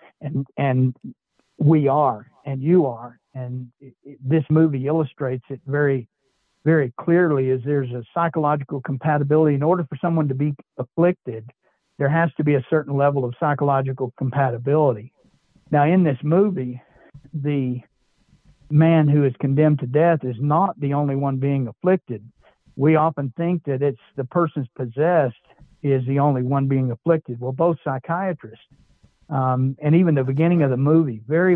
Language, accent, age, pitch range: English, American, 60-79, 130-155 Hz